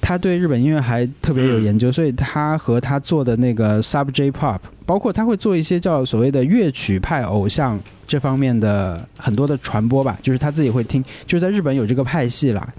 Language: Chinese